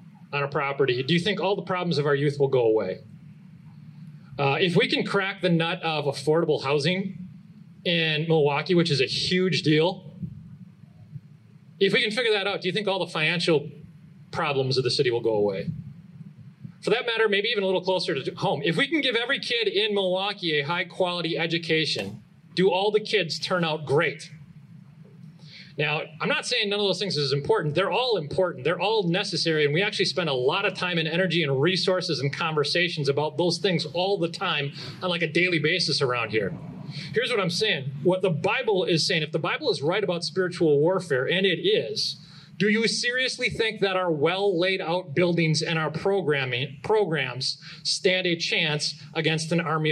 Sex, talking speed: male, 195 wpm